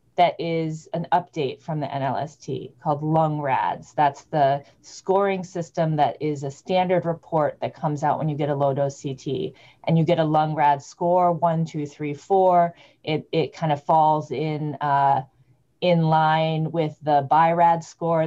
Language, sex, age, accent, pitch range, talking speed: English, female, 30-49, American, 145-175 Hz, 175 wpm